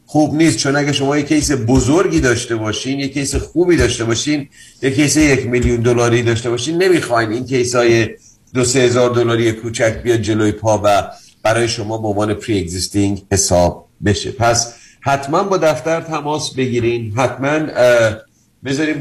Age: 50-69